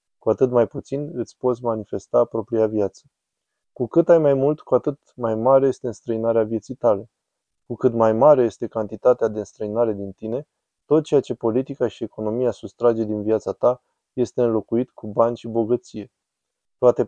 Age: 20-39